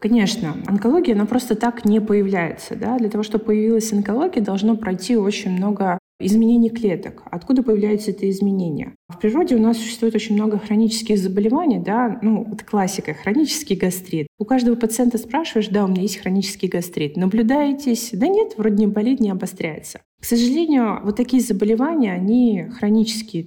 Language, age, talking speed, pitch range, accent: Russian, 20-39, 160 wpm, 190-225 Hz, native